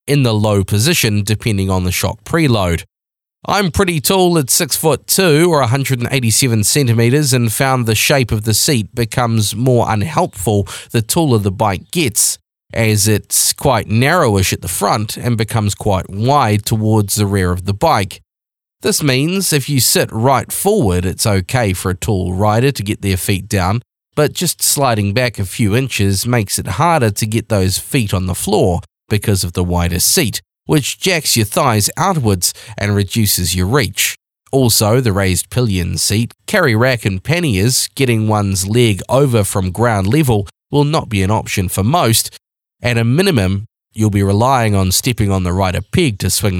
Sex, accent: male, Australian